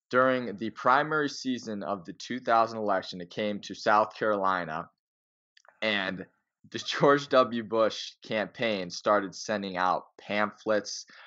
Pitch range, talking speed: 90-110 Hz, 120 wpm